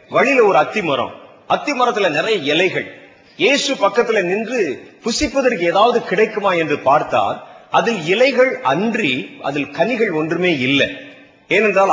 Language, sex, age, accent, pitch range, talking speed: Tamil, male, 40-59, native, 180-270 Hz, 115 wpm